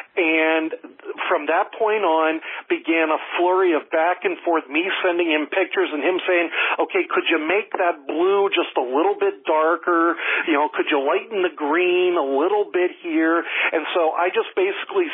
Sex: male